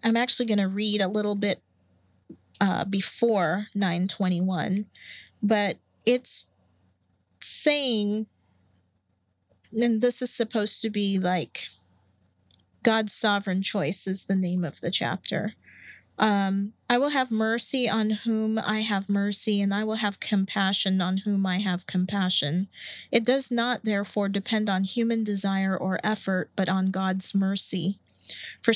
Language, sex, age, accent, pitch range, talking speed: English, female, 40-59, American, 190-225 Hz, 135 wpm